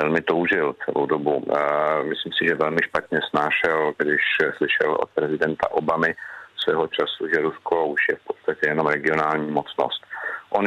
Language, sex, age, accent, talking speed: Czech, male, 50-69, native, 150 wpm